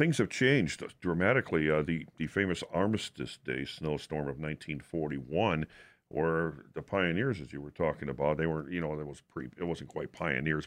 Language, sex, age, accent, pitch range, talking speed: English, male, 50-69, American, 75-95 Hz, 180 wpm